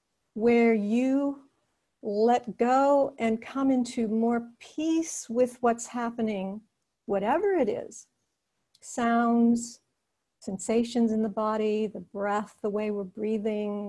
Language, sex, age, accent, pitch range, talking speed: English, female, 50-69, American, 210-235 Hz, 110 wpm